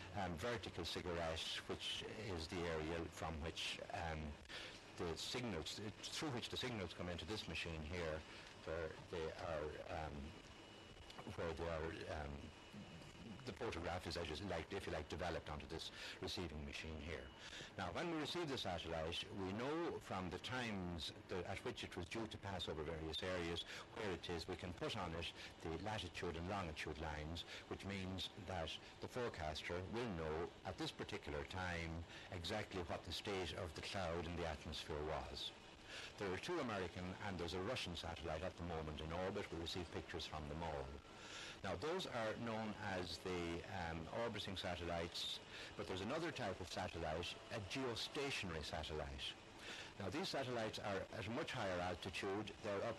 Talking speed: 165 wpm